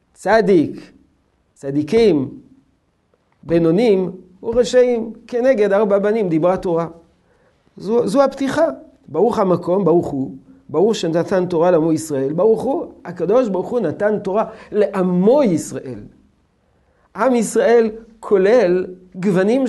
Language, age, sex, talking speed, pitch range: Hebrew, 50-69, male, 105 wpm, 145-220 Hz